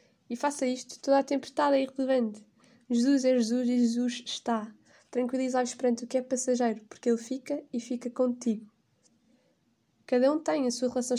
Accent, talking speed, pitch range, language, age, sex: Brazilian, 170 wpm, 230-260 Hz, Portuguese, 10-29, female